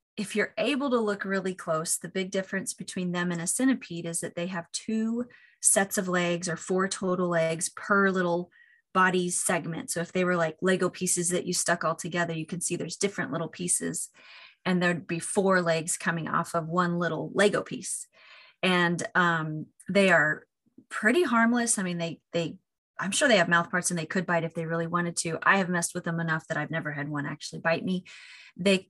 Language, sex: English, female